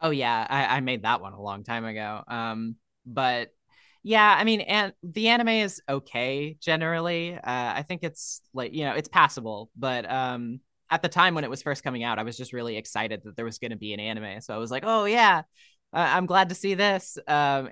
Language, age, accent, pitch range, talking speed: English, 20-39, American, 120-165 Hz, 225 wpm